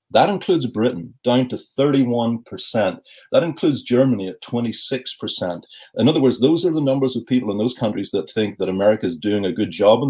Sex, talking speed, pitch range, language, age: male, 195 wpm, 105-135 Hz, English, 30-49